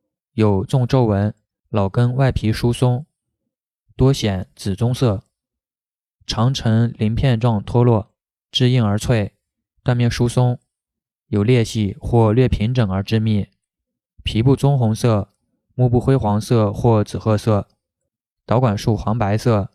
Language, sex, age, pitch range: Chinese, male, 20-39, 105-125 Hz